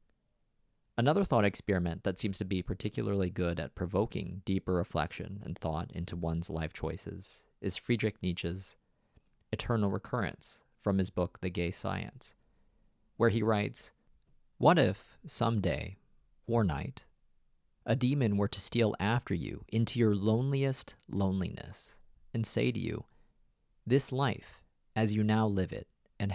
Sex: male